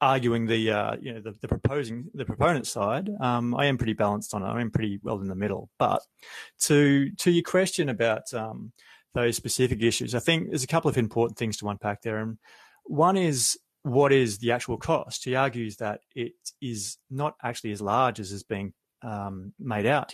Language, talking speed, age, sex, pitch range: English, 205 wpm, 30-49, male, 110-140 Hz